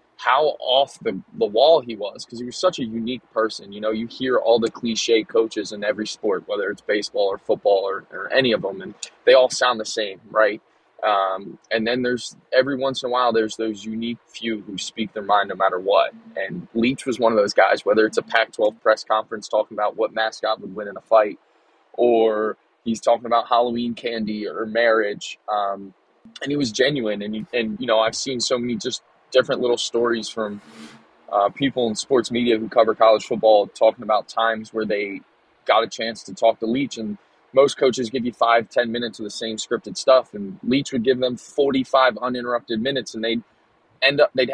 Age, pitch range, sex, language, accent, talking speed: 20-39, 110-130 Hz, male, English, American, 215 wpm